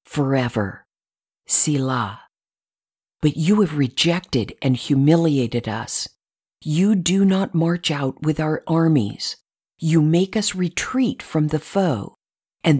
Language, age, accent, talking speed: English, 50-69, American, 115 wpm